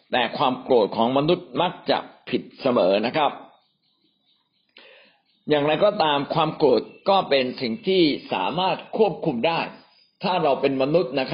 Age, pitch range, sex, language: 60-79, 130-175 Hz, male, Thai